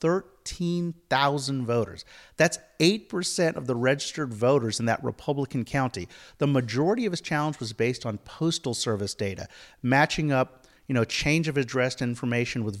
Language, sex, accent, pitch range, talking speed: English, male, American, 120-160 Hz, 150 wpm